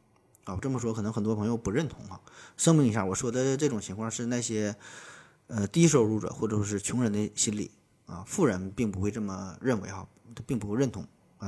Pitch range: 100-125 Hz